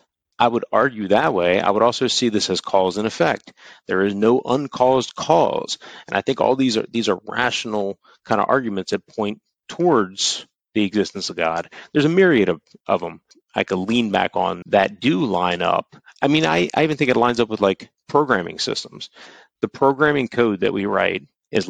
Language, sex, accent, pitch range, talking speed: English, male, American, 100-125 Hz, 200 wpm